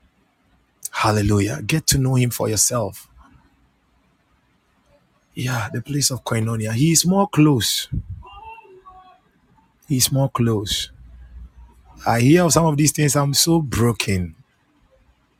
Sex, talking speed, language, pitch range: male, 115 wpm, English, 110-170 Hz